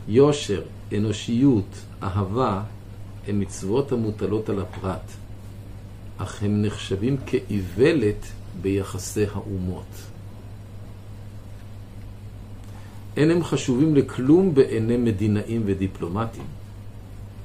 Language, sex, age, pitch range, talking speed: Hebrew, male, 50-69, 100-110 Hz, 70 wpm